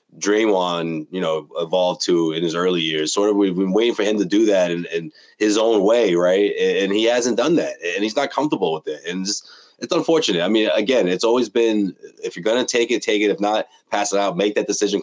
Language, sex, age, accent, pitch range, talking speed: English, male, 30-49, American, 90-120 Hz, 245 wpm